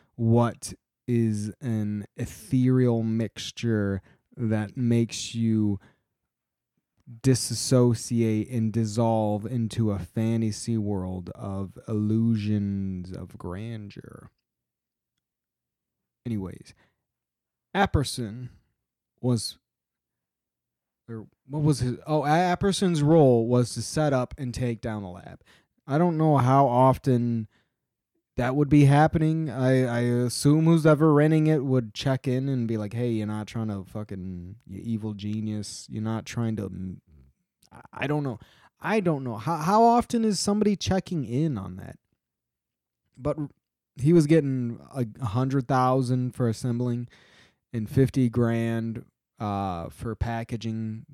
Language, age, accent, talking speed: English, 20-39, American, 120 wpm